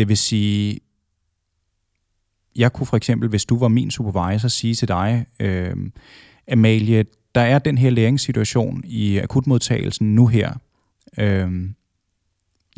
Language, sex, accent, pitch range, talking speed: Danish, male, native, 100-120 Hz, 125 wpm